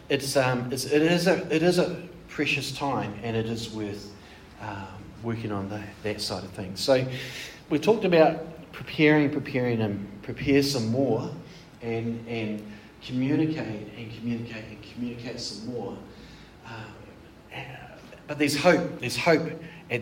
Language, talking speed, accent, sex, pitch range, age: English, 145 wpm, Australian, male, 105-140 Hz, 40-59